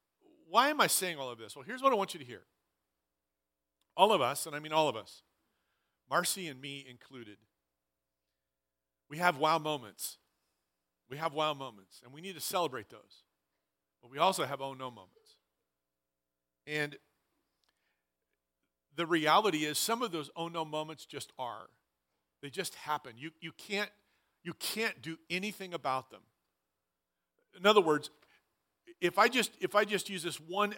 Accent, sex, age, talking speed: American, male, 50-69, 160 wpm